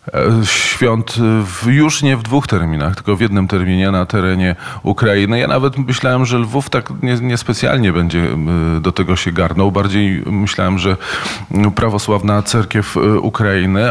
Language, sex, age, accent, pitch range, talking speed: Polish, male, 40-59, native, 95-115 Hz, 135 wpm